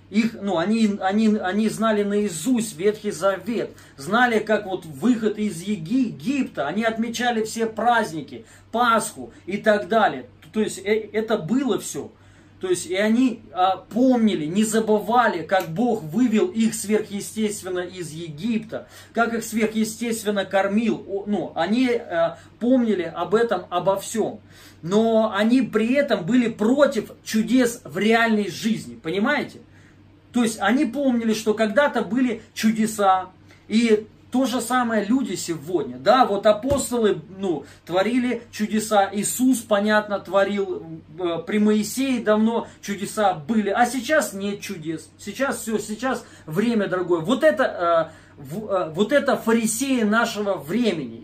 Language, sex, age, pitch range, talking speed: Russian, male, 20-39, 195-235 Hz, 130 wpm